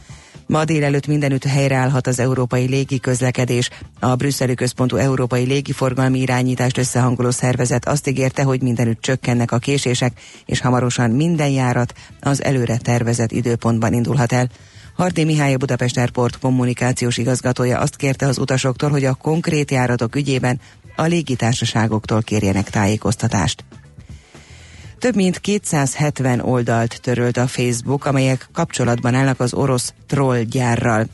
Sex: female